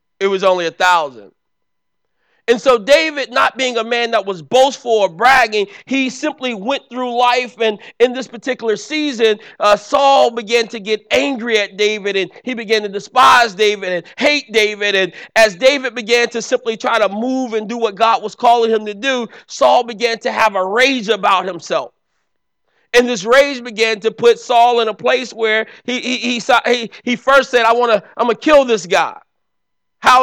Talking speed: 195 wpm